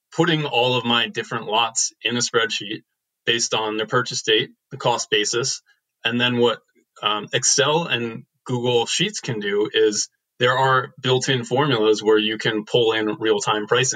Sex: male